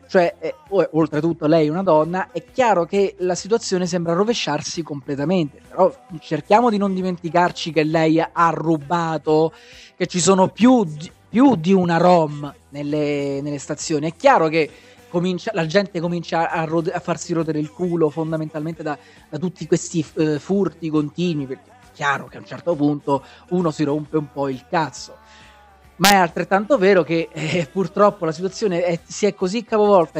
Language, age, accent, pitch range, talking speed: Italian, 30-49, native, 155-195 Hz, 170 wpm